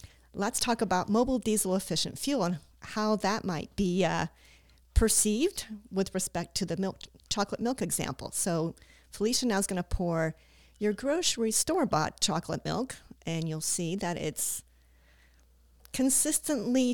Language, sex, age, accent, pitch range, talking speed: English, female, 50-69, American, 170-220 Hz, 140 wpm